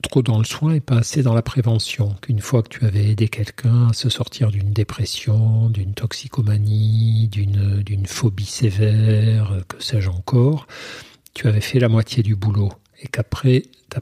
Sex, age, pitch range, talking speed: male, 50-69, 105-130 Hz, 170 wpm